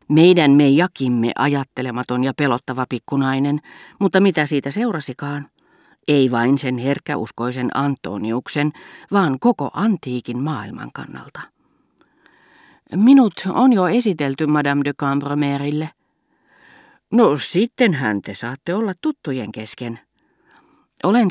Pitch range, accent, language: 120-155 Hz, native, Finnish